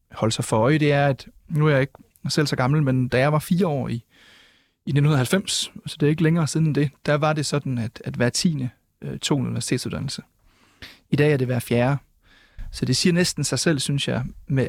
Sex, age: male, 30-49